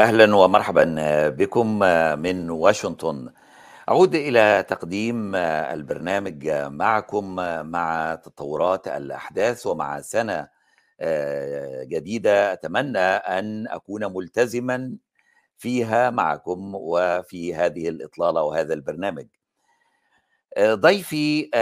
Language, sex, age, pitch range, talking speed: Arabic, male, 60-79, 95-115 Hz, 80 wpm